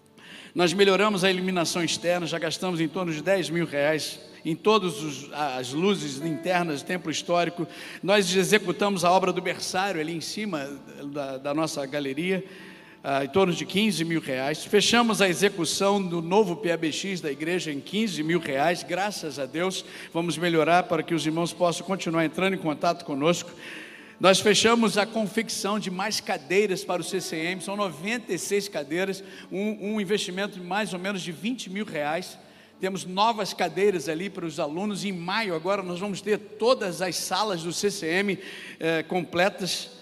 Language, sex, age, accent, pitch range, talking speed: Portuguese, male, 50-69, Brazilian, 165-200 Hz, 165 wpm